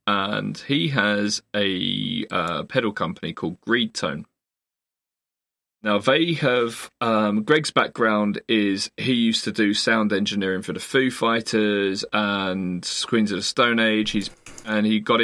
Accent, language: British, English